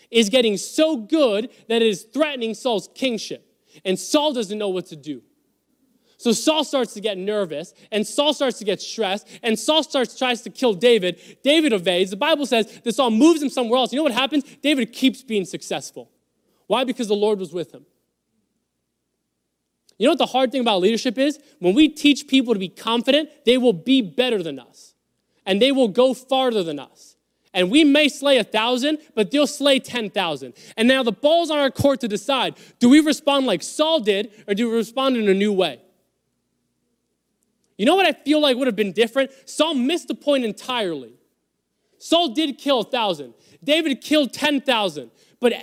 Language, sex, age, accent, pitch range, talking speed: English, male, 20-39, American, 215-285 Hz, 195 wpm